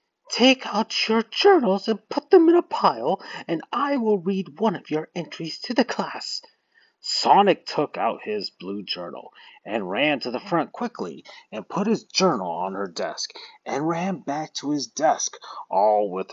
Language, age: English, 30-49